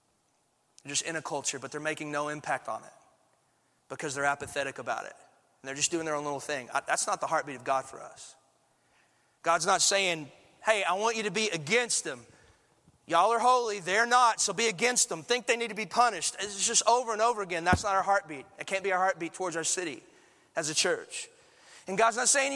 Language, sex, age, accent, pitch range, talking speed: English, male, 30-49, American, 160-225 Hz, 225 wpm